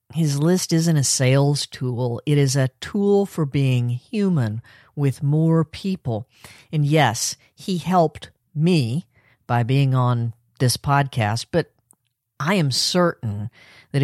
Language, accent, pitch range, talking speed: English, American, 125-165 Hz, 135 wpm